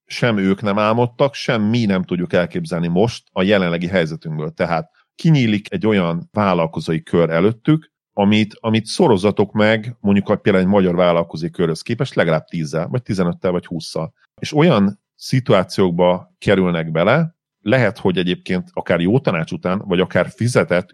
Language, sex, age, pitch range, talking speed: Hungarian, male, 40-59, 90-115 Hz, 150 wpm